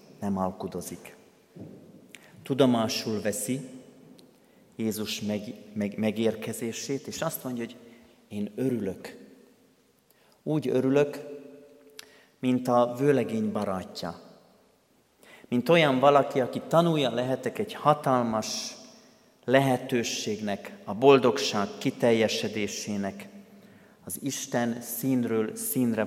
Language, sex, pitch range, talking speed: Hungarian, male, 105-145 Hz, 80 wpm